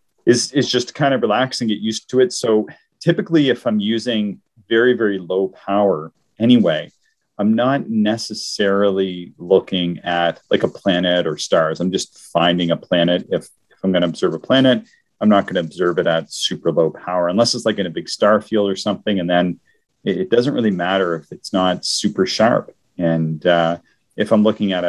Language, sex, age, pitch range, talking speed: English, male, 30-49, 85-110 Hz, 200 wpm